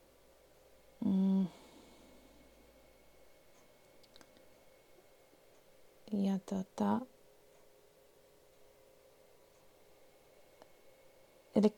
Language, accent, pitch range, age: Finnish, native, 190-275 Hz, 30-49